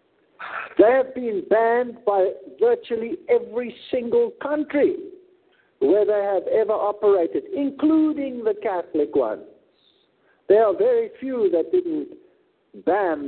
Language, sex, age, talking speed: English, male, 60-79, 115 wpm